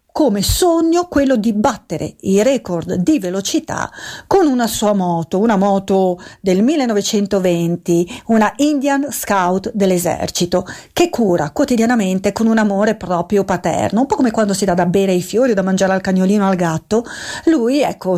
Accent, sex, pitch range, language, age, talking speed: native, female, 185-225 Hz, Italian, 40-59, 160 wpm